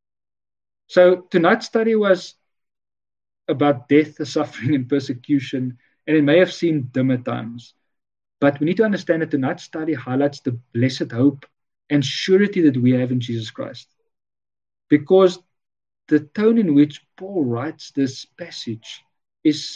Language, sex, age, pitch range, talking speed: English, male, 40-59, 120-165 Hz, 145 wpm